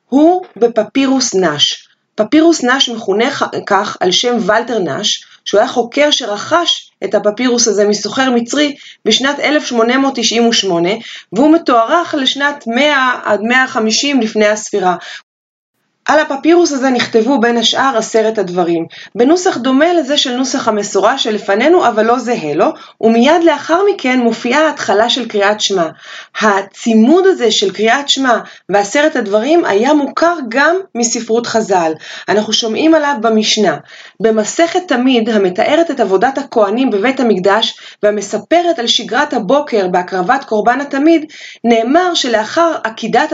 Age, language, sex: 30-49, Hebrew, female